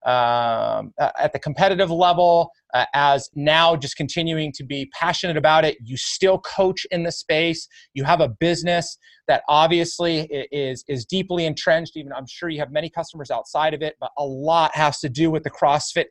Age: 30-49